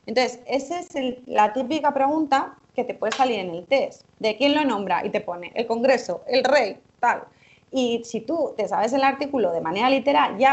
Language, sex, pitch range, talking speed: Spanish, female, 195-260 Hz, 210 wpm